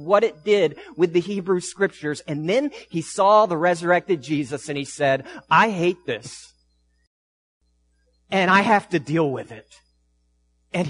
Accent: American